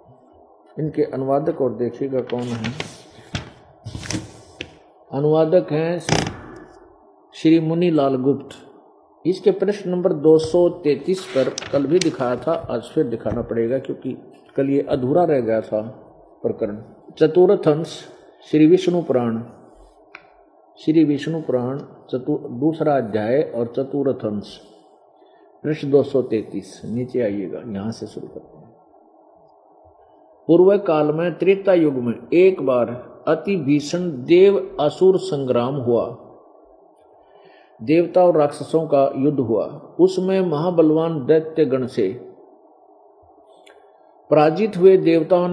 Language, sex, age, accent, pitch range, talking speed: Hindi, male, 50-69, native, 135-175 Hz, 105 wpm